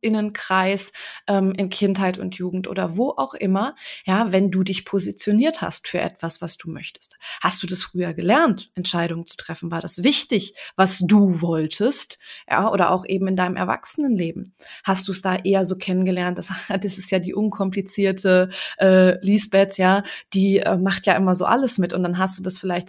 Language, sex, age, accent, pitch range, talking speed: German, female, 20-39, German, 185-220 Hz, 190 wpm